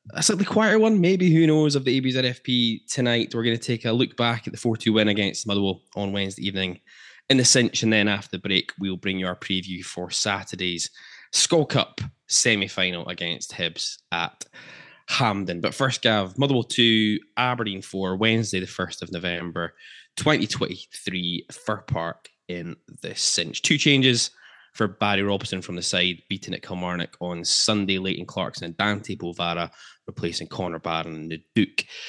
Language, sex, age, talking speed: English, male, 10-29, 170 wpm